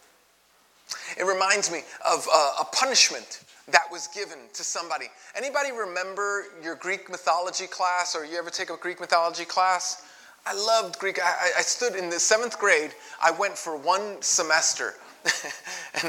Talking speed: 155 wpm